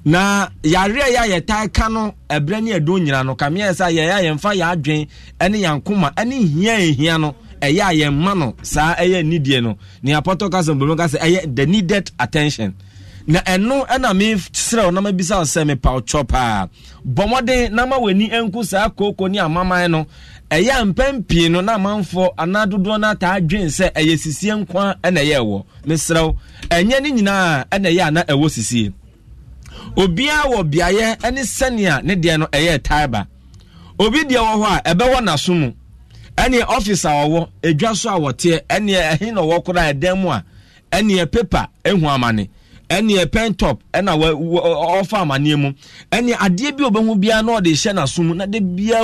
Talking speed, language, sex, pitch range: 180 wpm, English, male, 150-205 Hz